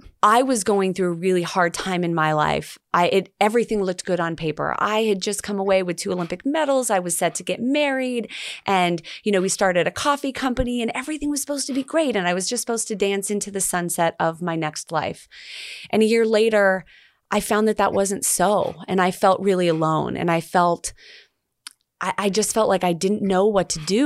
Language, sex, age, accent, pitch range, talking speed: English, female, 30-49, American, 175-225 Hz, 225 wpm